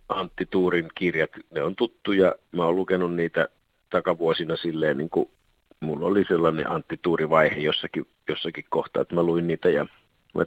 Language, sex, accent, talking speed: Finnish, male, native, 155 wpm